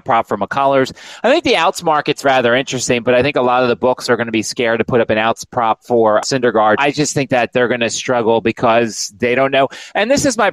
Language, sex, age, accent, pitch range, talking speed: English, male, 30-49, American, 125-160 Hz, 275 wpm